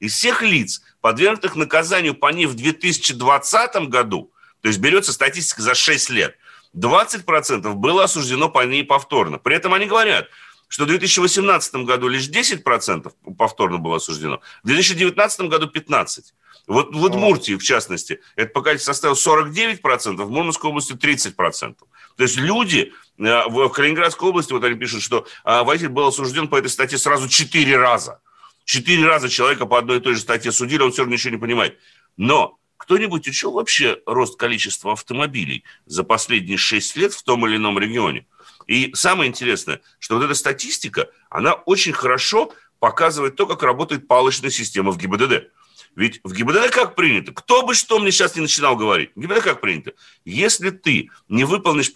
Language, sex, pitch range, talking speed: Russian, male, 125-190 Hz, 165 wpm